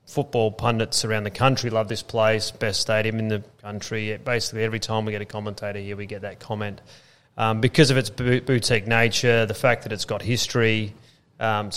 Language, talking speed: English, 205 wpm